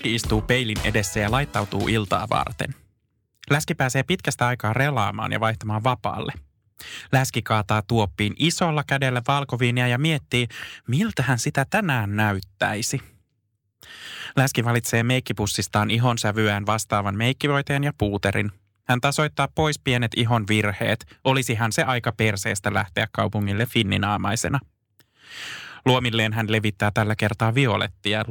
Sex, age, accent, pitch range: male, 20-39, native, 105-130 Hz